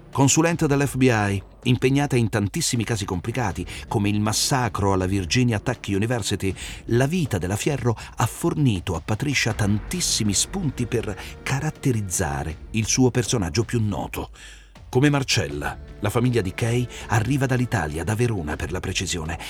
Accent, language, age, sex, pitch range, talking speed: native, Italian, 40-59, male, 95-130 Hz, 135 wpm